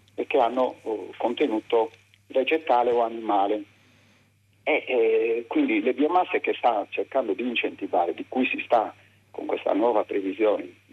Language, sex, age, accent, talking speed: Italian, male, 50-69, native, 145 wpm